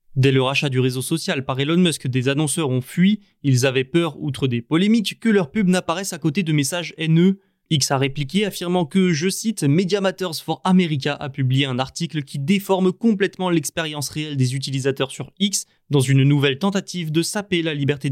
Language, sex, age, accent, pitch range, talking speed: French, male, 20-39, French, 140-180 Hz, 200 wpm